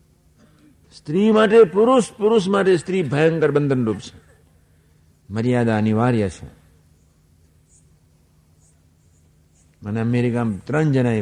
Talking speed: 95 wpm